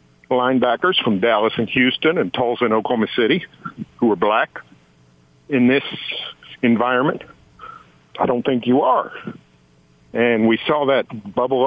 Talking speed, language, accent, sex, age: 135 wpm, English, American, male, 50-69